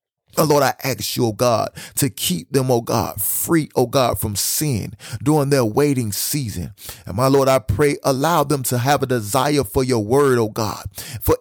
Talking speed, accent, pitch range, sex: 195 wpm, American, 115-150 Hz, male